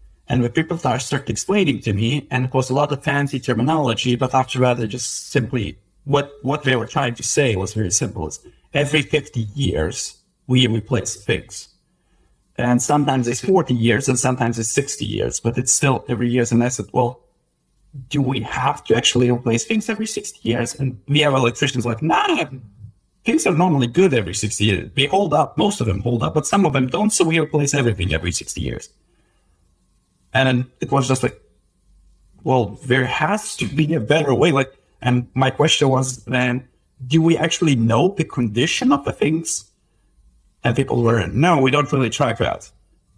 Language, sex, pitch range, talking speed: English, male, 115-145 Hz, 190 wpm